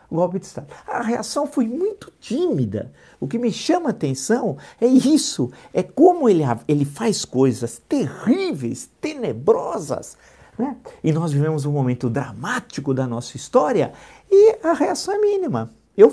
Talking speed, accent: 155 wpm, Brazilian